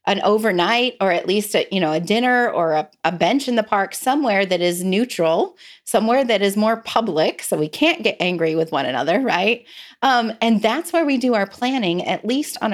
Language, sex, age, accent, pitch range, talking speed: English, female, 30-49, American, 175-230 Hz, 210 wpm